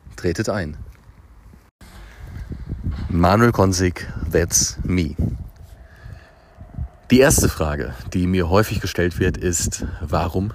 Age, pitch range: 40-59, 85-110 Hz